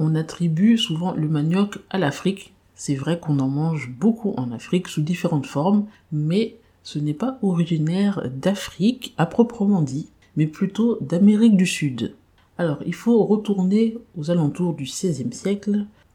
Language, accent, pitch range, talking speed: French, French, 150-195 Hz, 150 wpm